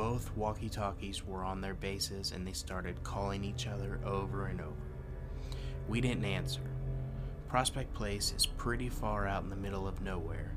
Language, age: English, 20-39